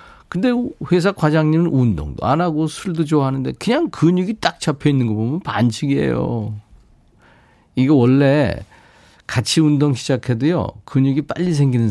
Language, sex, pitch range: Korean, male, 110-150 Hz